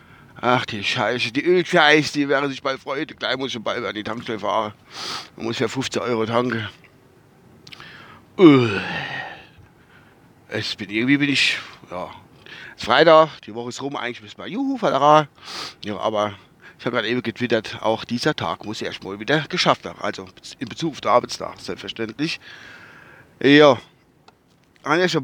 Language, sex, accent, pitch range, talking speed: German, male, German, 110-145 Hz, 165 wpm